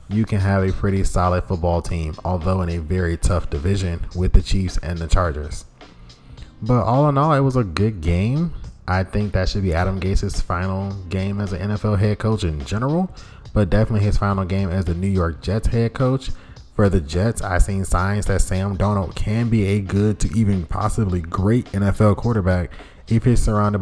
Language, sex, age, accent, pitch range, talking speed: English, male, 20-39, American, 90-110 Hz, 200 wpm